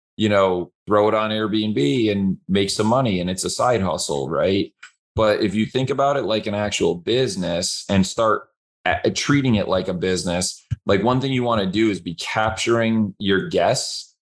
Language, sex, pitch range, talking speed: English, male, 95-110 Hz, 190 wpm